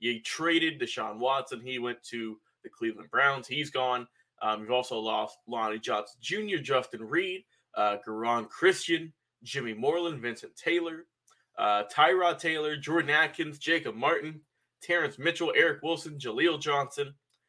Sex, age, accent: male, 20-39, American